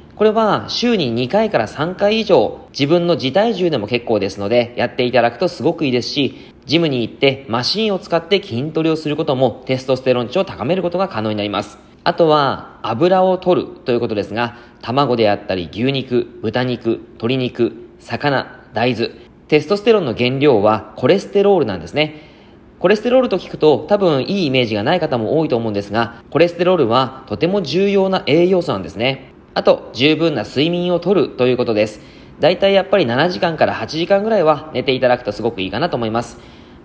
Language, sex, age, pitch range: Japanese, male, 40-59, 115-175 Hz